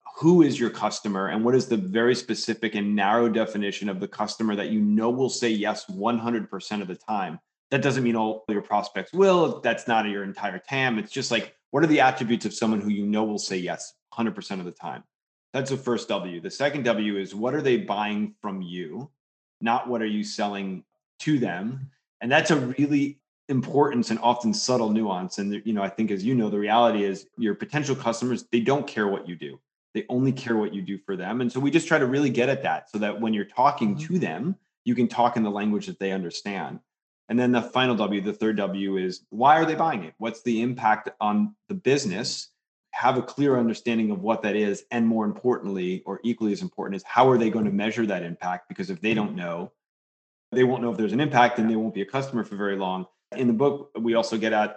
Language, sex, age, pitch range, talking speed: English, male, 30-49, 105-125 Hz, 240 wpm